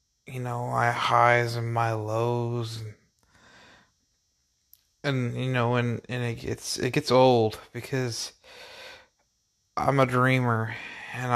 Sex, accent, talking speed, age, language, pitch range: male, American, 115 wpm, 20-39, English, 110-125 Hz